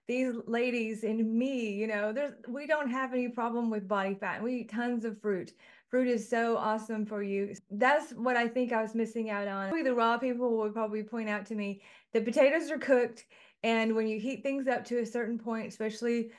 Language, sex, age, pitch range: English, female, 30-49, 210-240 Hz